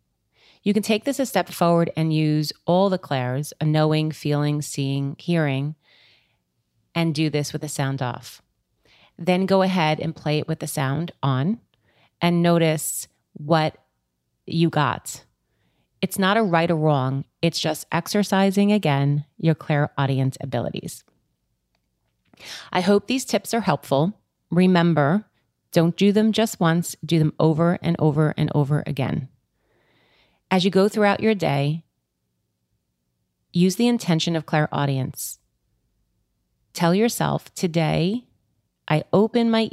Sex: female